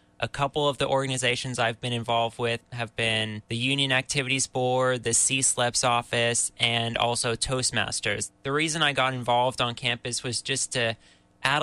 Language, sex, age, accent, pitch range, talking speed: English, male, 20-39, American, 120-130 Hz, 165 wpm